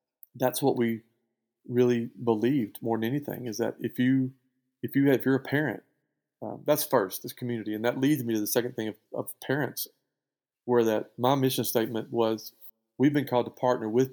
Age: 40-59